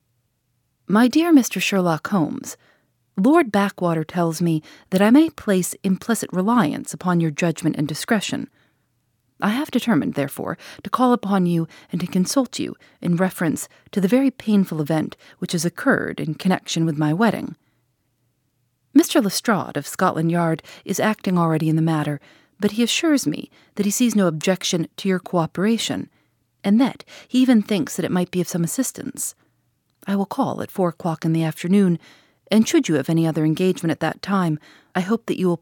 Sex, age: female, 40-59